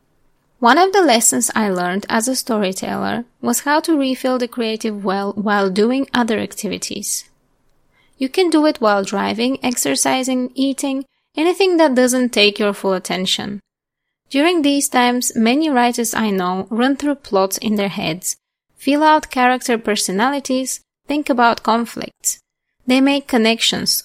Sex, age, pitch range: female, 20-39, 205-270 Hz